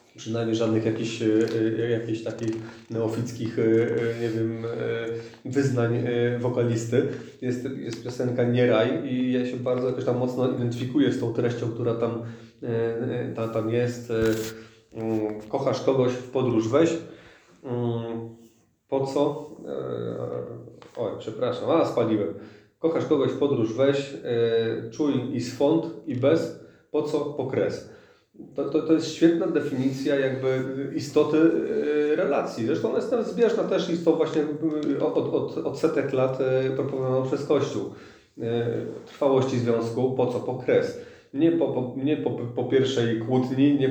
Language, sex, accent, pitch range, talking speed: Polish, male, native, 115-140 Hz, 125 wpm